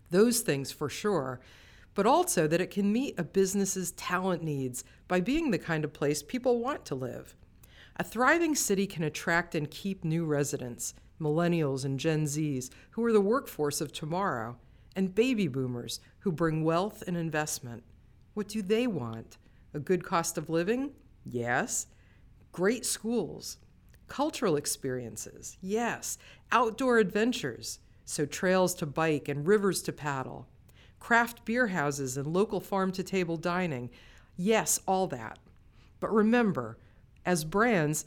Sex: female